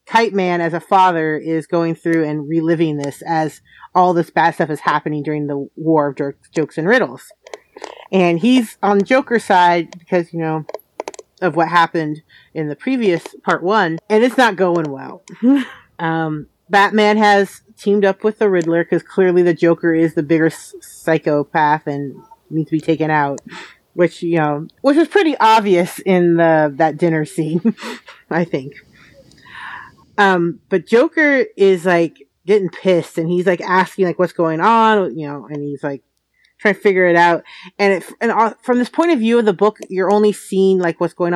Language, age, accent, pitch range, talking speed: English, 30-49, American, 165-205 Hz, 185 wpm